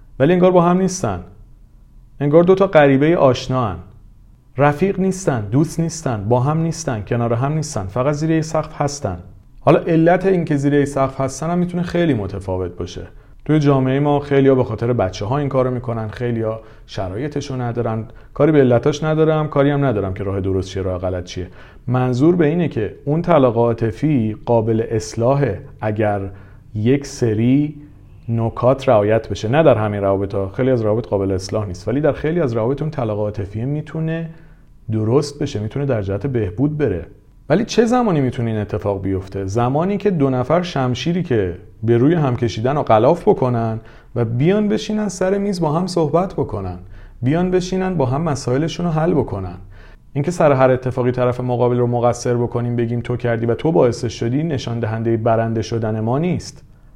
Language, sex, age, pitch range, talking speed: Persian, male, 40-59, 110-150 Hz, 170 wpm